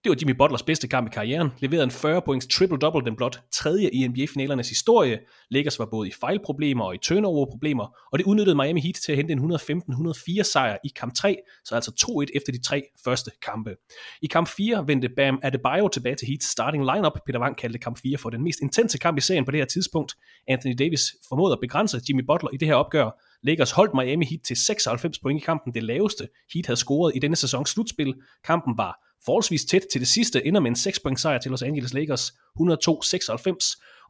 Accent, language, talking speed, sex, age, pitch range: Danish, English, 210 wpm, male, 30-49, 130-165 Hz